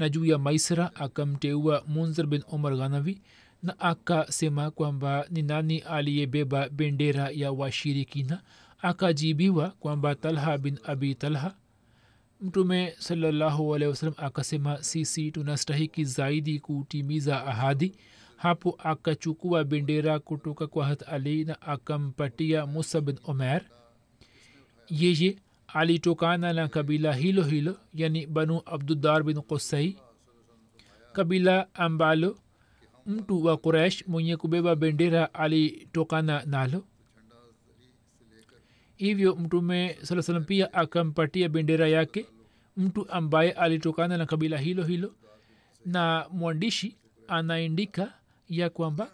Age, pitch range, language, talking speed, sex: 40-59, 145-170 Hz, Swahili, 110 wpm, male